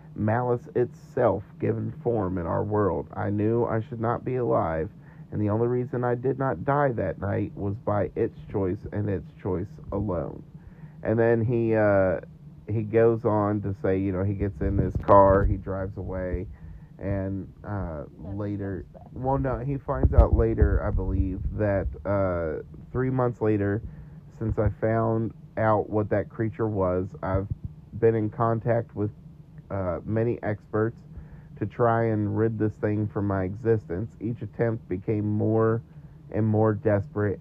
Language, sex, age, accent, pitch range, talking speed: English, male, 40-59, American, 100-120 Hz, 160 wpm